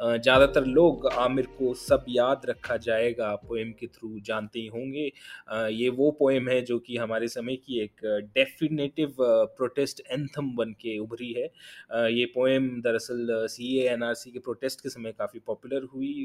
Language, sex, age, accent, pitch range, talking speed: Hindi, male, 20-39, native, 115-135 Hz, 175 wpm